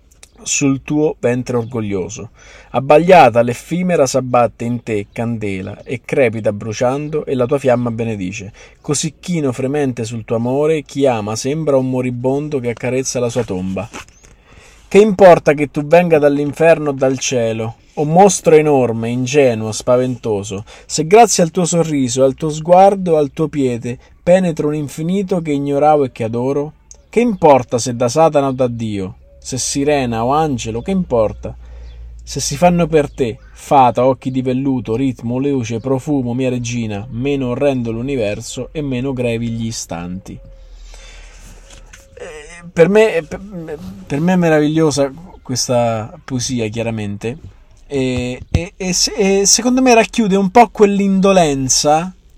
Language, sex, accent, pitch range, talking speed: Italian, male, native, 120-155 Hz, 135 wpm